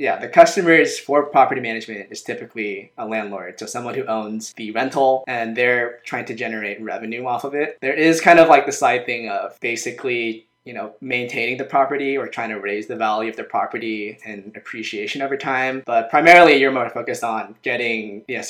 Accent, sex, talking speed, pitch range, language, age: American, male, 205 wpm, 110-135 Hz, English, 20-39